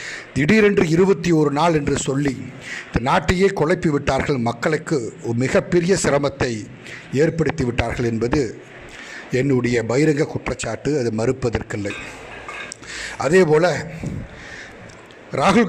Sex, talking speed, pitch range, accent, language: male, 85 wpm, 135-175 Hz, native, Tamil